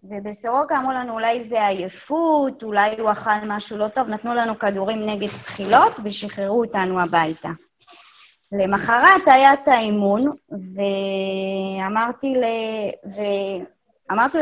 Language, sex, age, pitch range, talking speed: Hebrew, female, 20-39, 205-245 Hz, 105 wpm